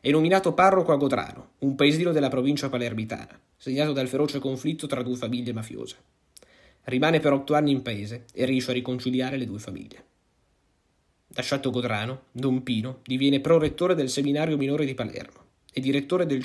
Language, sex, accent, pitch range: Italian, male, native, 120-140 Hz